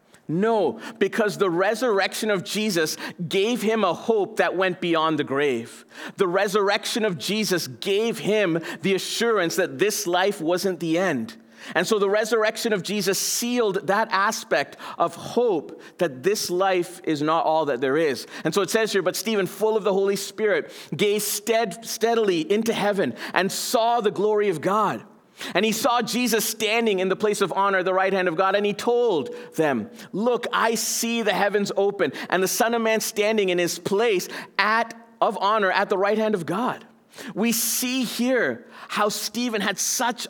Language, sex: English, male